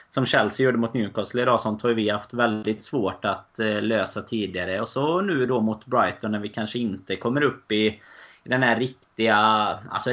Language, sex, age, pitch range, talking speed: Swedish, male, 20-39, 105-120 Hz, 195 wpm